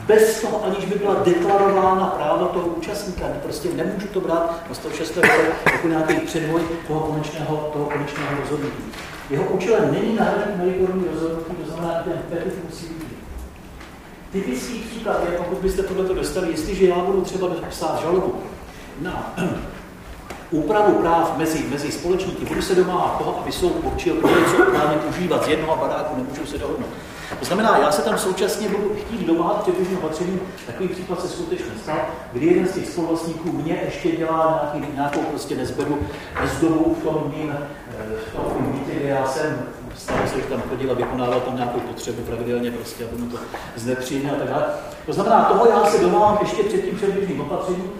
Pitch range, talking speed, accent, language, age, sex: 150-190 Hz, 180 wpm, native, Czech, 40-59, male